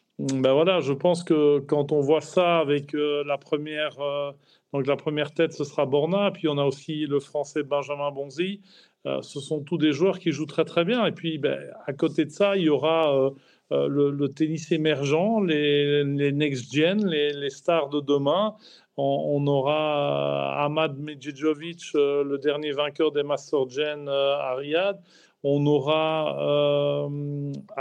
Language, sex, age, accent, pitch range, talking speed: French, male, 40-59, French, 145-160 Hz, 160 wpm